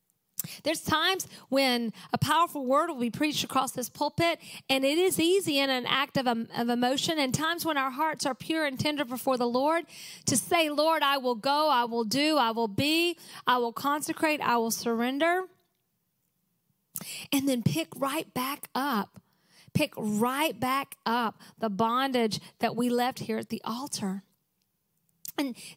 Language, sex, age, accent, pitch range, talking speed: English, female, 40-59, American, 230-315 Hz, 170 wpm